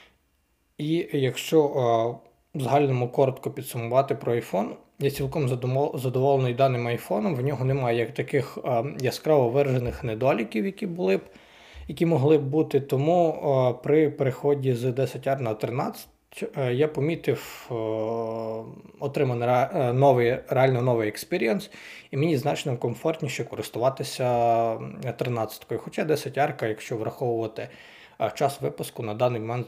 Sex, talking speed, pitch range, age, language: male, 115 wpm, 115-140 Hz, 20-39, Ukrainian